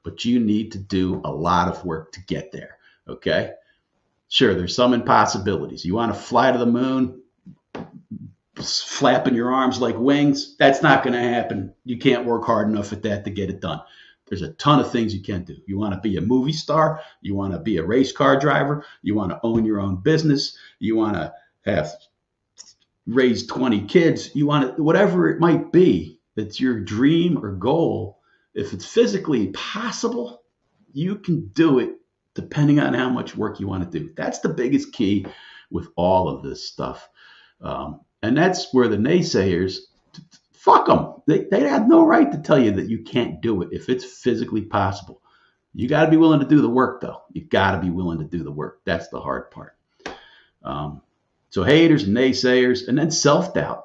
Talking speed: 195 wpm